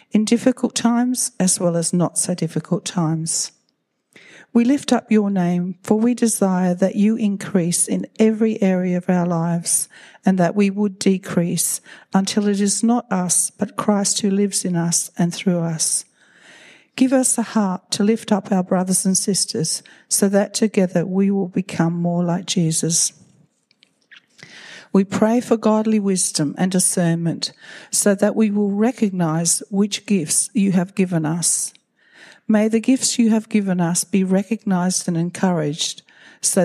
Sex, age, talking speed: female, 60-79, 155 wpm